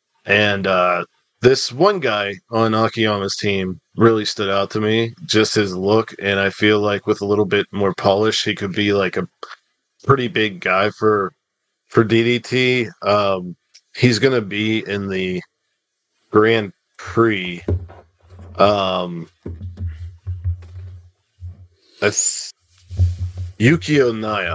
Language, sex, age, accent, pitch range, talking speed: English, male, 40-59, American, 95-120 Hz, 120 wpm